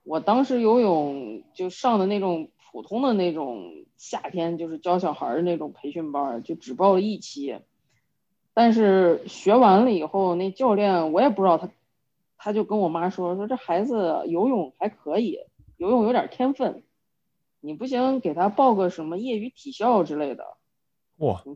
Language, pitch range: Chinese, 160-215 Hz